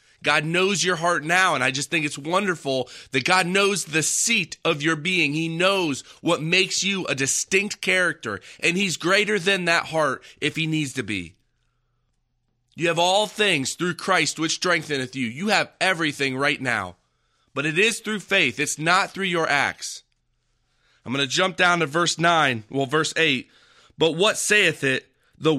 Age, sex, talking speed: 30-49, male, 185 wpm